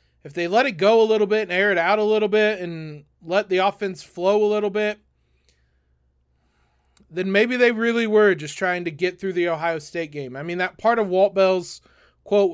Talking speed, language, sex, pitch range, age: 215 wpm, English, male, 150-210 Hz, 20-39